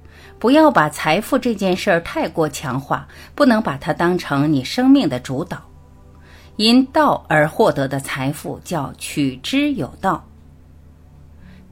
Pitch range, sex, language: 130-215 Hz, female, Chinese